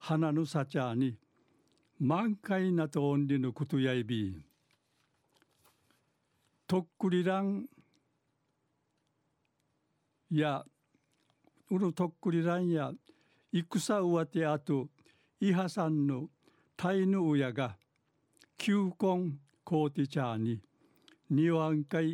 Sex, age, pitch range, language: male, 60-79, 140-180 Hz, Japanese